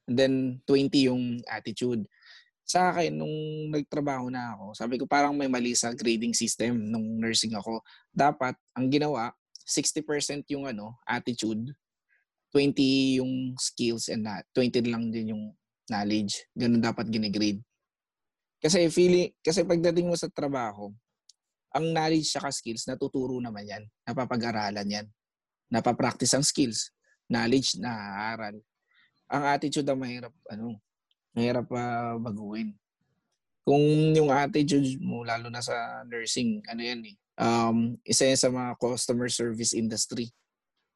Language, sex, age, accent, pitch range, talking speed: English, male, 20-39, Filipino, 115-135 Hz, 135 wpm